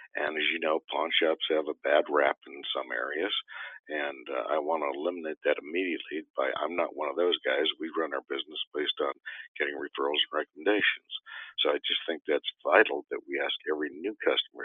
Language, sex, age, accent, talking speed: English, male, 60-79, American, 205 wpm